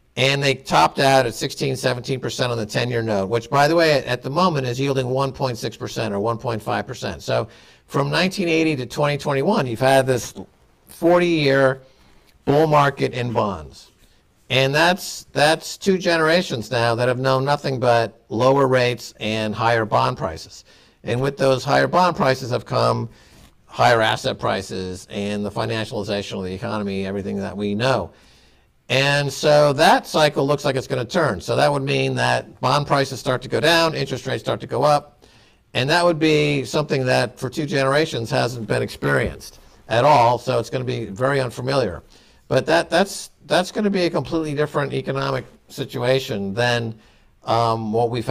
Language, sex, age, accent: English, male, 50-69, American